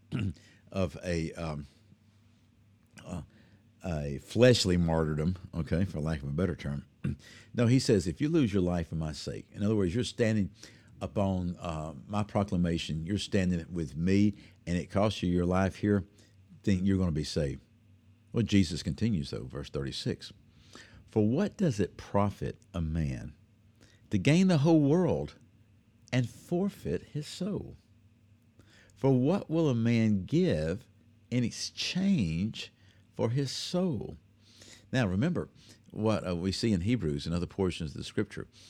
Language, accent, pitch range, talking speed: English, American, 90-115 Hz, 150 wpm